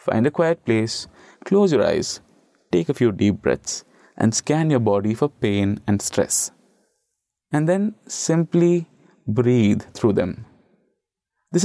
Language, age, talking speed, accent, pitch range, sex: English, 20-39, 140 wpm, Indian, 105-145 Hz, male